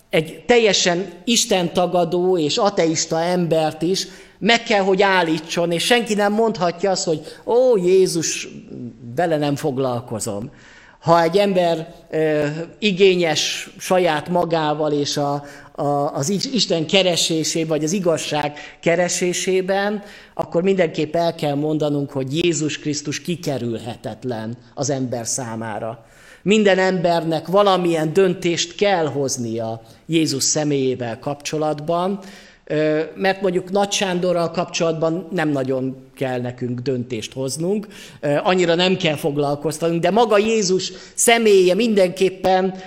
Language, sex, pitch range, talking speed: Hungarian, male, 150-190 Hz, 110 wpm